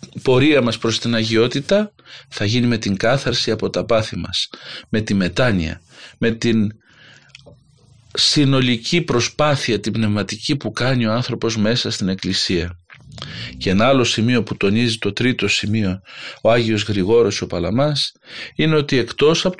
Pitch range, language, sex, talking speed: 100-130 Hz, Greek, male, 150 wpm